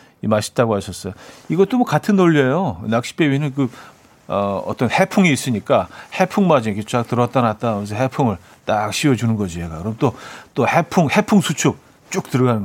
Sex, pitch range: male, 110-150 Hz